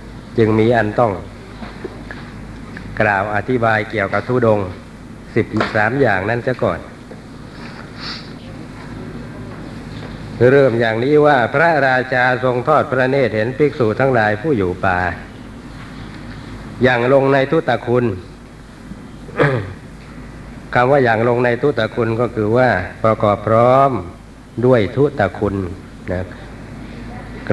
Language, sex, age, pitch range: Thai, male, 60-79, 110-130 Hz